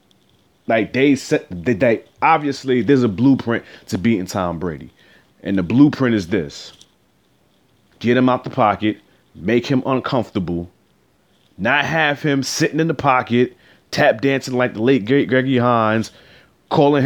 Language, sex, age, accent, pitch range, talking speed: English, male, 30-49, American, 110-140 Hz, 145 wpm